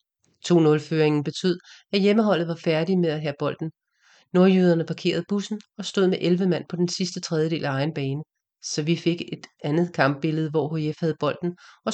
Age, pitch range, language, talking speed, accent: 30-49, 150-180 Hz, English, 180 wpm, Danish